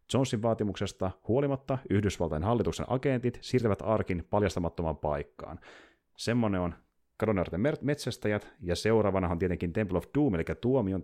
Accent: native